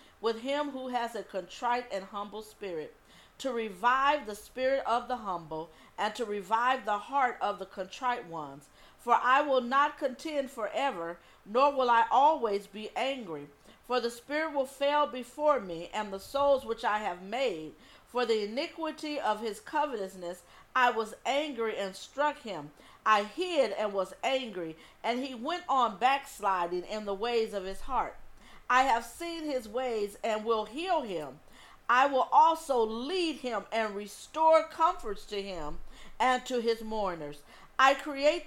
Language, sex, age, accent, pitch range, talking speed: English, female, 40-59, American, 210-280 Hz, 160 wpm